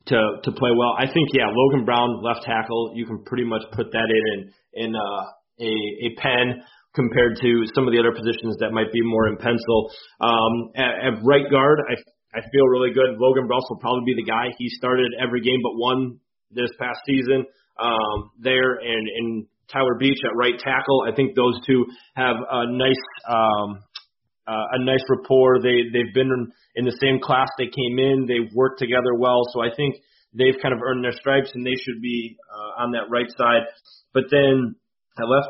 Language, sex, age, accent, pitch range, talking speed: English, male, 30-49, American, 115-130 Hz, 205 wpm